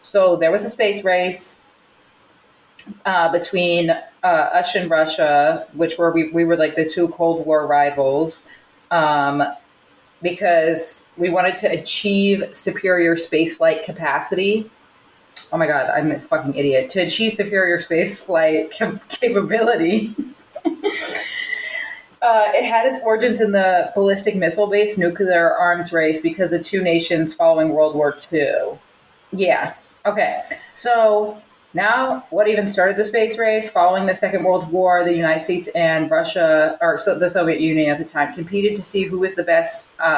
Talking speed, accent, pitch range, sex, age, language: 150 wpm, American, 165-215 Hz, female, 30-49, English